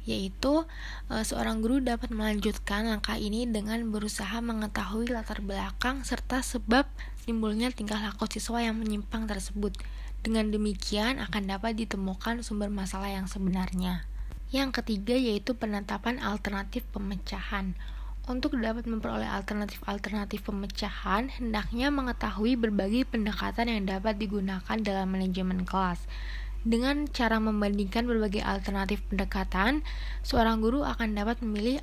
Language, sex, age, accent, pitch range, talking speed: Indonesian, female, 20-39, native, 200-235 Hz, 115 wpm